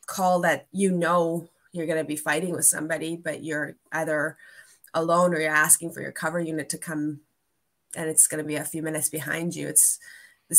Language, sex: English, female